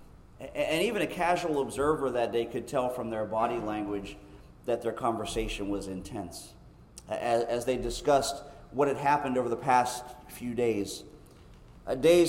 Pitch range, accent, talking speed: 115-145 Hz, American, 145 wpm